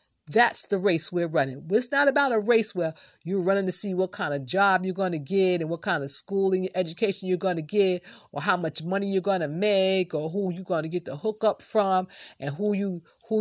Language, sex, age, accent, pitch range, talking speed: English, female, 50-69, American, 175-220 Hz, 240 wpm